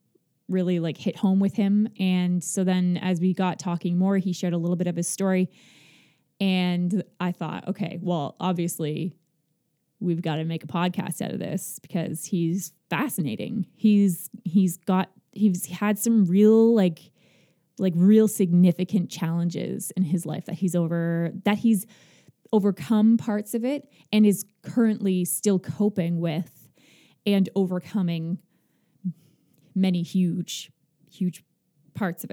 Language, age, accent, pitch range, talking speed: English, 20-39, American, 170-195 Hz, 145 wpm